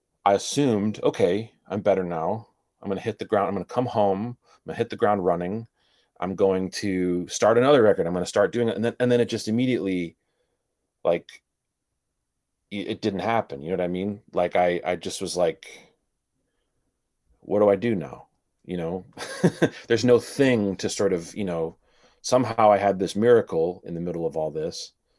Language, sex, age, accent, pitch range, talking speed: English, male, 30-49, American, 85-115 Hz, 200 wpm